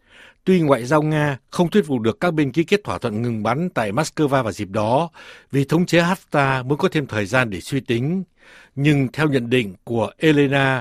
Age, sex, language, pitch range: 60-79, male, Vietnamese, 120-160 Hz